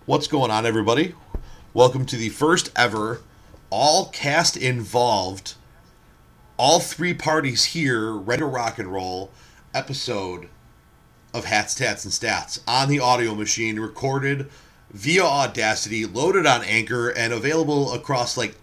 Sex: male